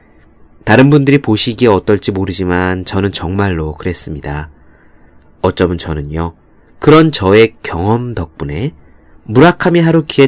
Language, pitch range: Korean, 85-140 Hz